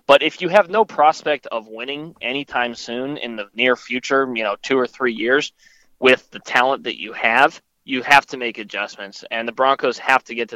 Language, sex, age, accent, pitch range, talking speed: English, male, 20-39, American, 110-130 Hz, 215 wpm